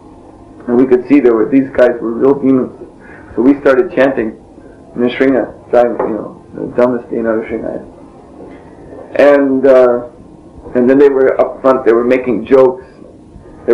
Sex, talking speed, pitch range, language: male, 160 wpm, 125-145 Hz, English